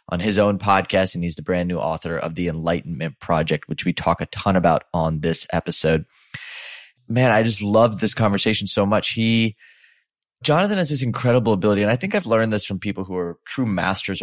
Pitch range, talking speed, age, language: 90-110 Hz, 205 wpm, 20-39, English